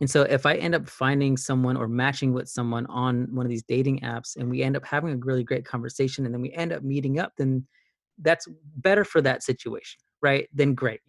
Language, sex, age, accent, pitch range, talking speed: English, male, 30-49, American, 120-140 Hz, 235 wpm